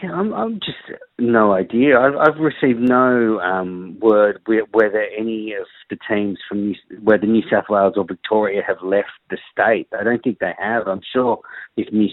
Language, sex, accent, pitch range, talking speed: English, male, Australian, 100-115 Hz, 185 wpm